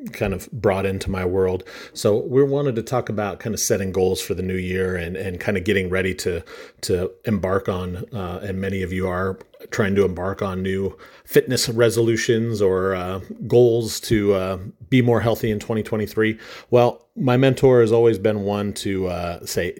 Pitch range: 95-115 Hz